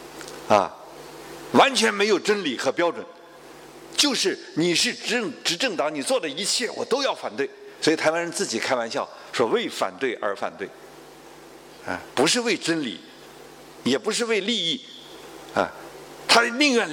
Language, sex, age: Chinese, male, 50-69